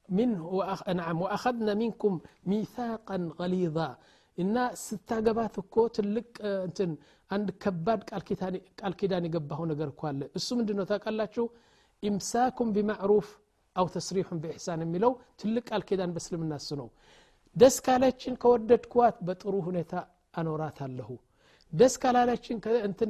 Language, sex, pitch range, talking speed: Amharic, male, 170-225 Hz, 95 wpm